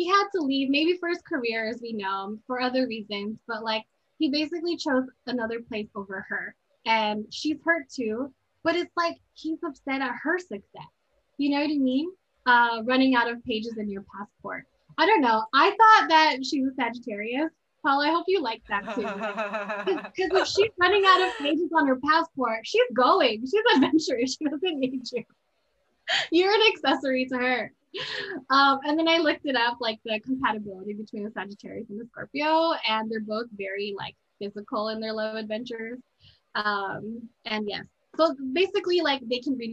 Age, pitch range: 10-29, 225-315 Hz